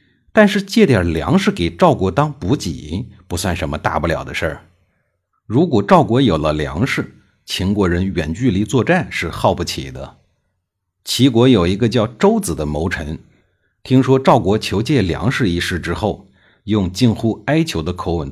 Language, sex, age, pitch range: Chinese, male, 50-69, 85-125 Hz